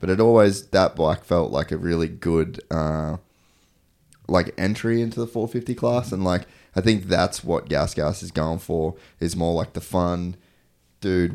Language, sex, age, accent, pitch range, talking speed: English, male, 20-39, Australian, 80-90 Hz, 180 wpm